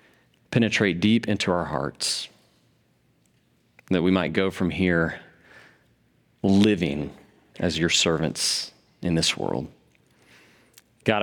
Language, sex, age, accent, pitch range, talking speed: English, male, 40-59, American, 95-125 Hz, 100 wpm